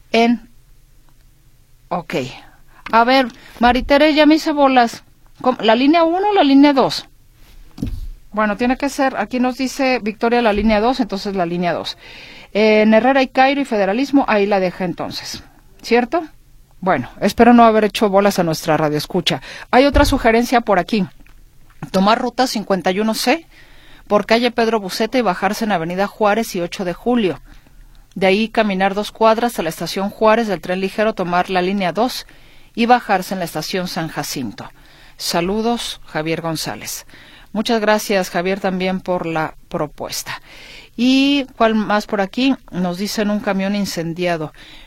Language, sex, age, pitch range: Spanish, female, 40-59, 170-230 Hz